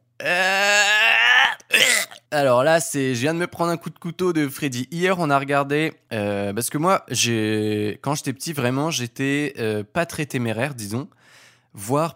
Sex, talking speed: male, 160 wpm